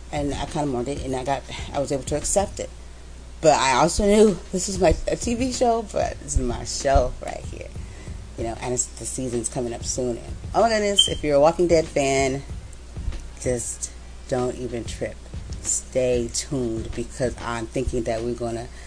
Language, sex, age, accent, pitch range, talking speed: English, female, 30-49, American, 115-145 Hz, 205 wpm